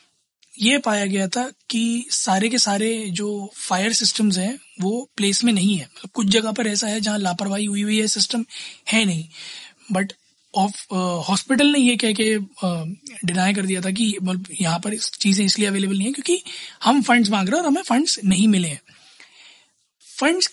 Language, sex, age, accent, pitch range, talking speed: Hindi, male, 20-39, native, 190-230 Hz, 185 wpm